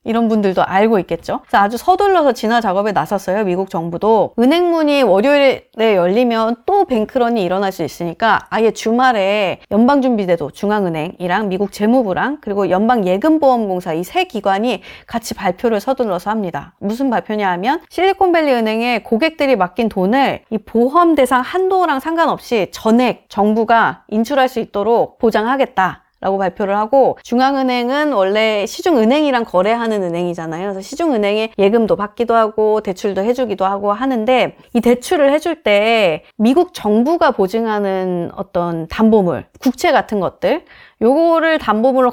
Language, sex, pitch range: Korean, female, 195-260 Hz